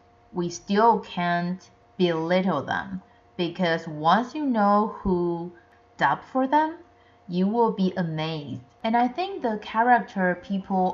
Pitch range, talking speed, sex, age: 155-195 Hz, 125 wpm, female, 30-49